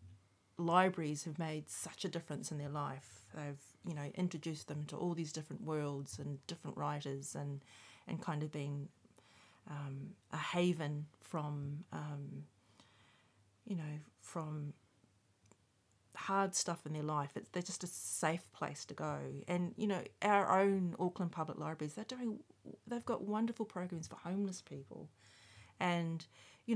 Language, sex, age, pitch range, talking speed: English, female, 30-49, 130-180 Hz, 150 wpm